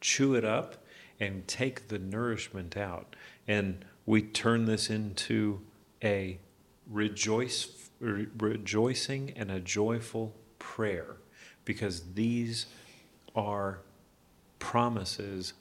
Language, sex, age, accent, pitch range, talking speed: English, male, 40-59, American, 105-130 Hz, 90 wpm